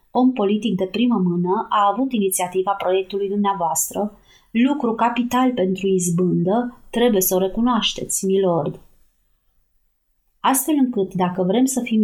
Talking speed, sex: 125 wpm, female